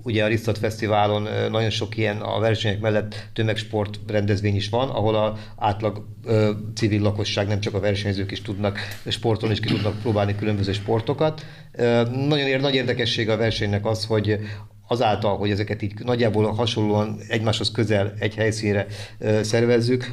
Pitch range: 105-115 Hz